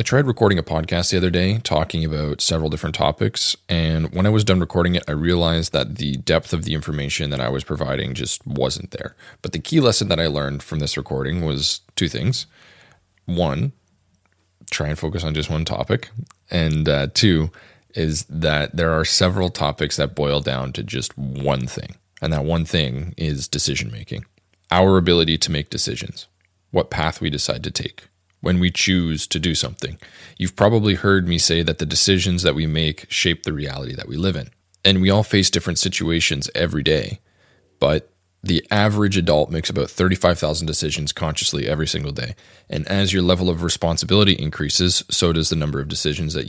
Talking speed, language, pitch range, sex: 190 wpm, English, 75-95 Hz, male